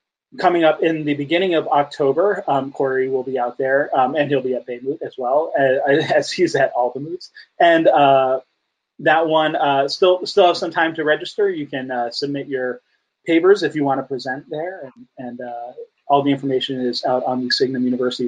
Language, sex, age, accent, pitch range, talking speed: English, male, 30-49, American, 130-165 Hz, 210 wpm